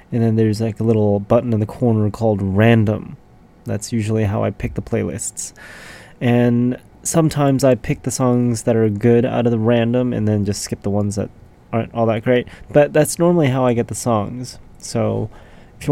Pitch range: 105-125 Hz